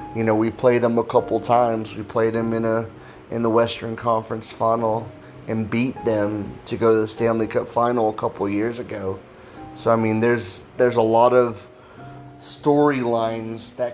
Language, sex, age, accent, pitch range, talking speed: English, male, 30-49, American, 110-125 Hz, 180 wpm